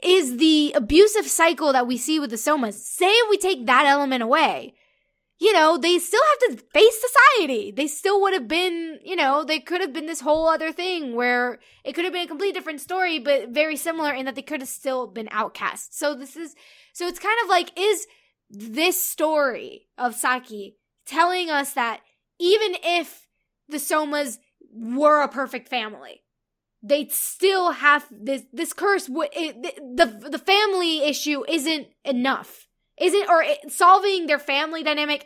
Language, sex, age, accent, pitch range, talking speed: English, female, 10-29, American, 265-335 Hz, 180 wpm